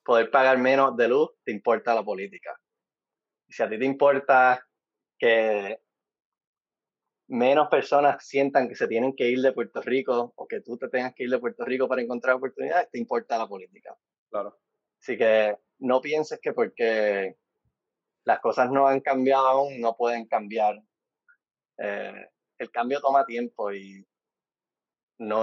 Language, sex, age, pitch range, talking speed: Spanish, male, 20-39, 110-135 Hz, 155 wpm